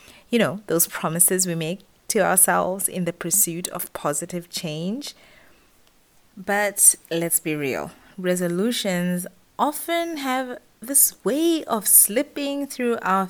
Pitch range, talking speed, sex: 170-225 Hz, 120 wpm, female